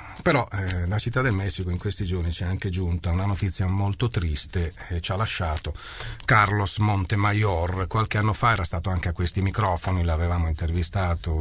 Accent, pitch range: native, 90-115 Hz